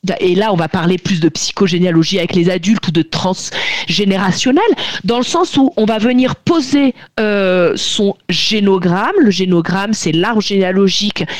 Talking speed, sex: 160 wpm, female